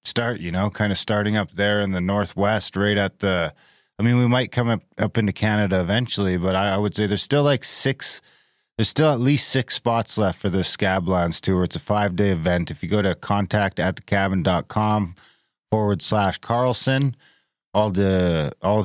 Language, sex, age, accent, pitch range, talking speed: English, male, 30-49, American, 95-110 Hz, 200 wpm